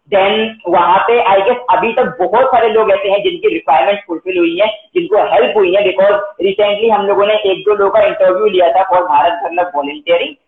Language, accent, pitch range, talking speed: English, Indian, 185-240 Hz, 170 wpm